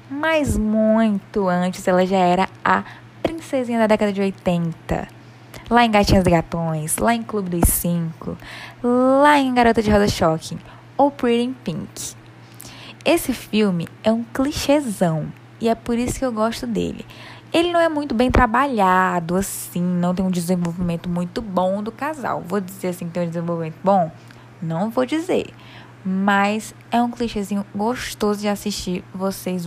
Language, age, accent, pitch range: Portuguese, 10-29, Brazilian, 175-230 Hz